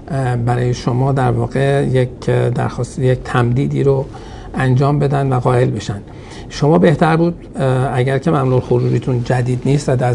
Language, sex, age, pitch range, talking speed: Persian, male, 60-79, 120-145 Hz, 150 wpm